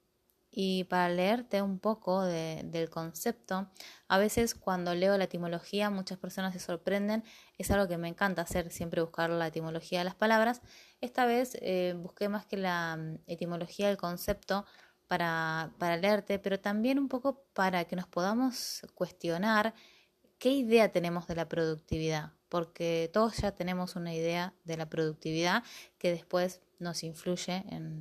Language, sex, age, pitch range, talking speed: Spanish, female, 20-39, 170-205 Hz, 155 wpm